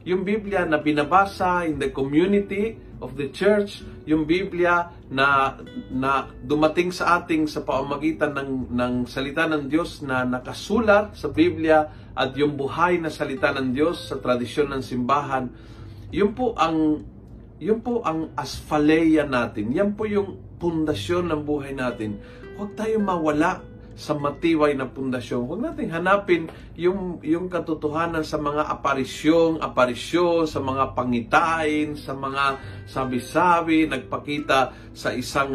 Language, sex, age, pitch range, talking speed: Filipino, male, 40-59, 130-170 Hz, 135 wpm